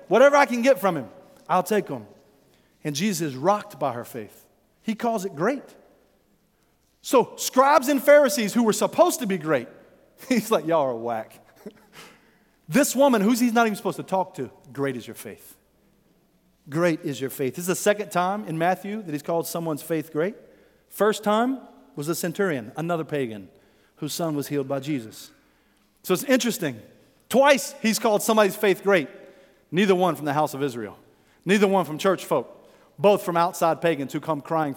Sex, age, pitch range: male, 40-59, 140-210 Hz